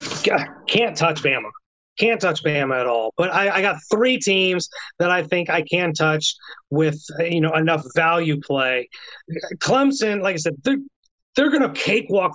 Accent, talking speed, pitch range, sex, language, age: American, 165 wpm, 150-185 Hz, male, English, 30-49